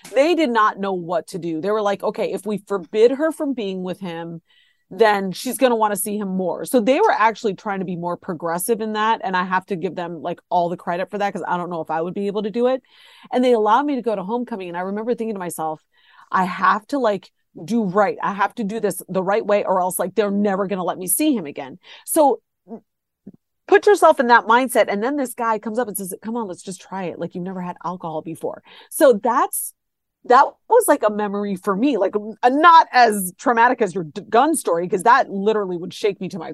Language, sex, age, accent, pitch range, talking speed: English, female, 30-49, American, 185-240 Hz, 255 wpm